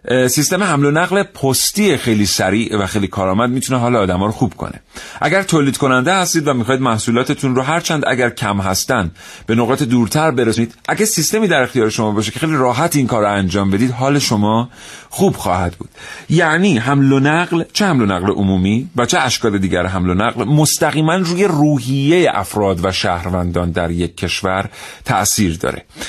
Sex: male